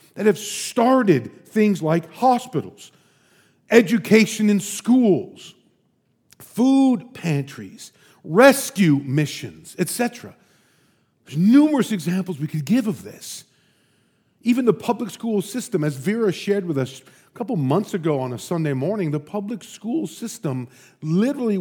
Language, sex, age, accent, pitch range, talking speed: English, male, 50-69, American, 155-215 Hz, 125 wpm